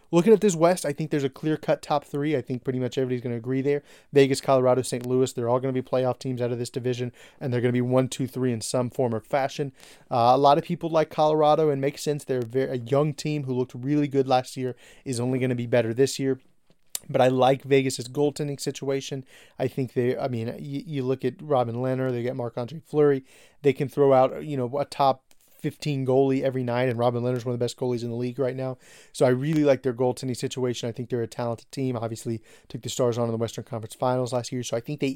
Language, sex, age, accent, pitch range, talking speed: English, male, 30-49, American, 125-145 Hz, 265 wpm